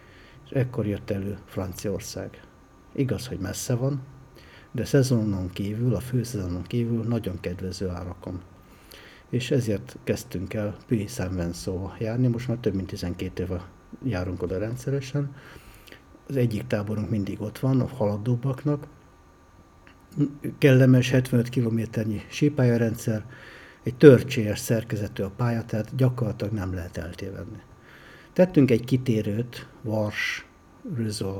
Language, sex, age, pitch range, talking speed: Hungarian, male, 60-79, 100-125 Hz, 115 wpm